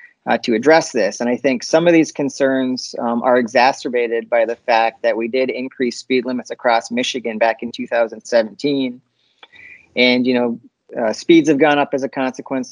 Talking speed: 185 wpm